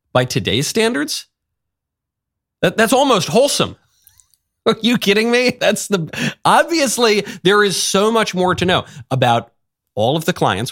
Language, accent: English, American